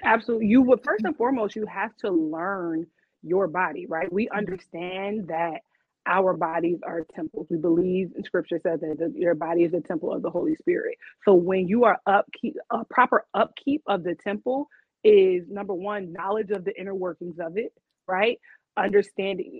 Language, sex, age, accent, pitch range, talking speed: English, female, 30-49, American, 180-230 Hz, 180 wpm